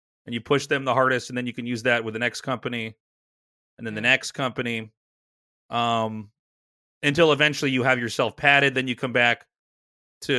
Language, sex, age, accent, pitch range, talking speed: English, male, 30-49, American, 110-135 Hz, 190 wpm